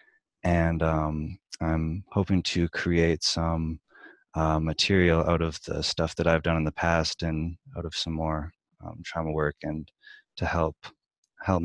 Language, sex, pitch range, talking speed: English, male, 80-90 Hz, 160 wpm